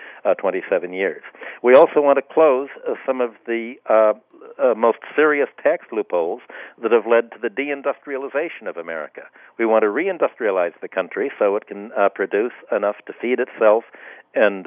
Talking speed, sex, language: 170 wpm, male, English